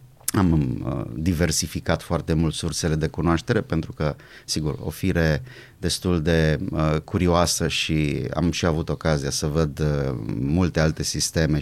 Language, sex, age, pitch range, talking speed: Romanian, male, 30-49, 80-105 Hz, 130 wpm